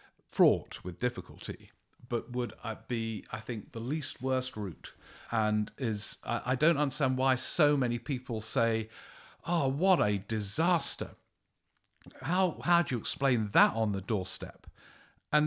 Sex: male